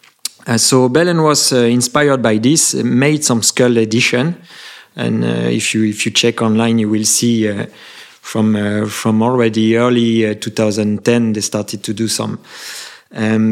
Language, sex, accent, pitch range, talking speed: English, male, French, 115-130 Hz, 165 wpm